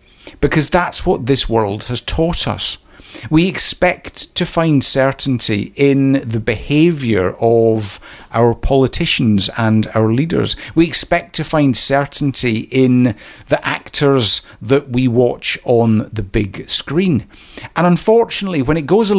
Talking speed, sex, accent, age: 135 wpm, male, British, 50-69